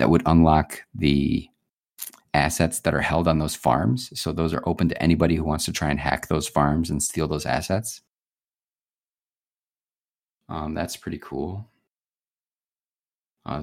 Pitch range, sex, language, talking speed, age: 75-90 Hz, male, English, 150 wpm, 30-49